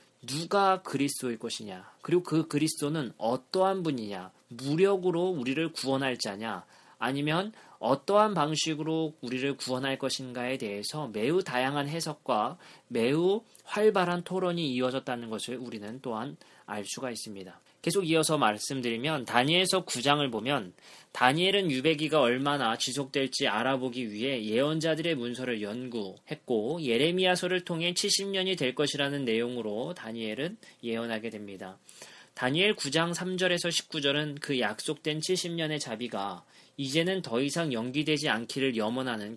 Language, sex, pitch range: Korean, male, 125-165 Hz